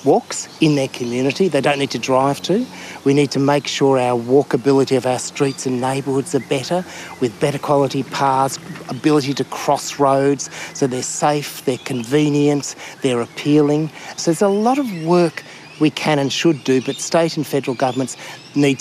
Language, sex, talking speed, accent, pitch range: English, male, 180 wpm, Australian, 125-150 Hz